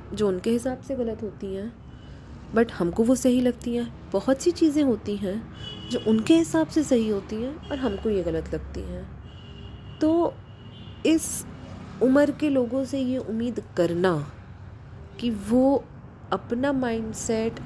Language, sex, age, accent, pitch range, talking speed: Hindi, female, 20-39, native, 195-260 Hz, 150 wpm